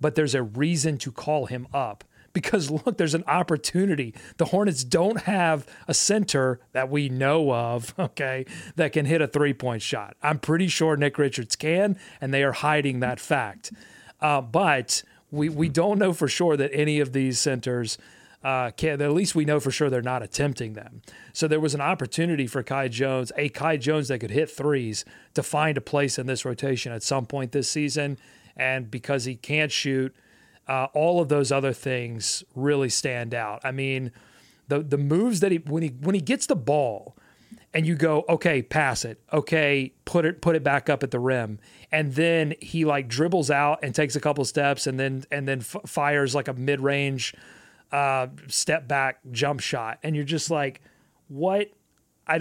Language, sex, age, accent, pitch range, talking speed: English, male, 40-59, American, 130-160 Hz, 190 wpm